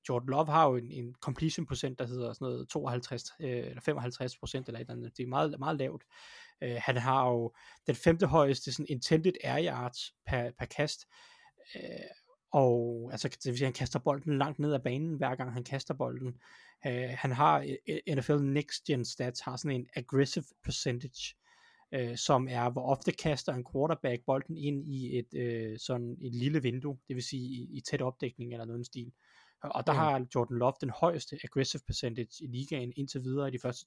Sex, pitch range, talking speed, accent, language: male, 125-155 Hz, 200 wpm, native, Danish